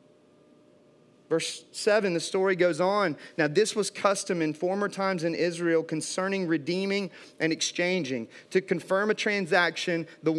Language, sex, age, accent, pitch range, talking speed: English, male, 40-59, American, 145-180 Hz, 140 wpm